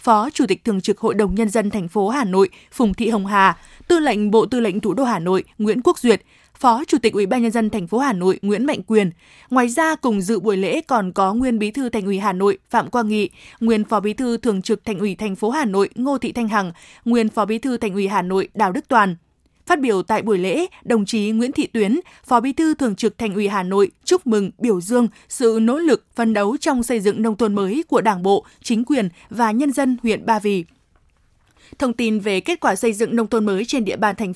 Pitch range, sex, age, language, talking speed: 210-250 Hz, female, 20-39, Vietnamese, 255 wpm